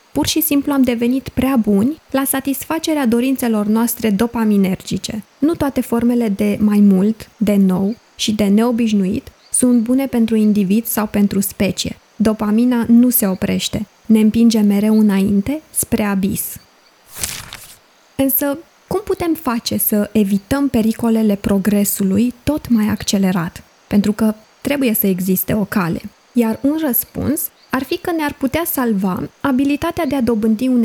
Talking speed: 140 wpm